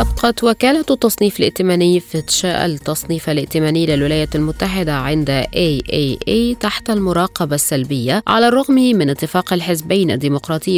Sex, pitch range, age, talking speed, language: female, 140-200 Hz, 20-39, 110 wpm, Arabic